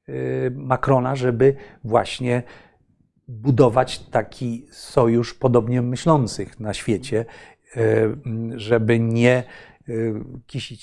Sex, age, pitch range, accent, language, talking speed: male, 40-59, 115-140 Hz, native, Polish, 70 wpm